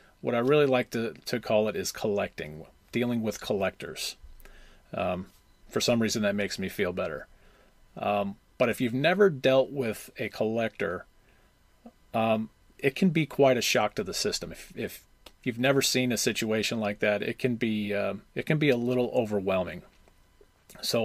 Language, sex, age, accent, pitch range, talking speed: English, male, 40-59, American, 105-125 Hz, 175 wpm